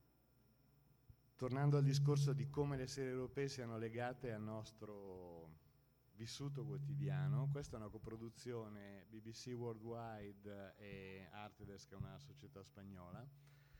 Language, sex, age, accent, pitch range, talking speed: Italian, male, 50-69, native, 110-140 Hz, 115 wpm